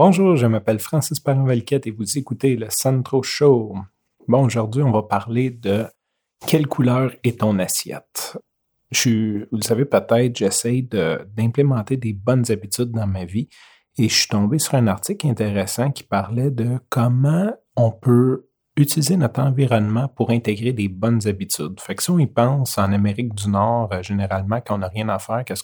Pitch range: 105-130 Hz